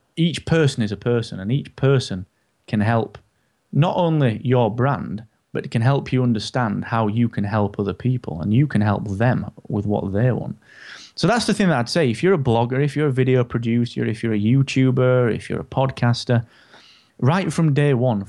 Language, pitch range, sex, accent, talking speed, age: English, 105-130 Hz, male, British, 205 wpm, 30-49